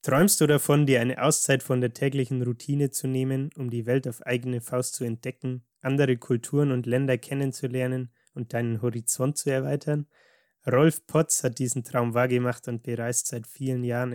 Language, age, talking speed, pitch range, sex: German, 20-39, 175 wpm, 120-135 Hz, male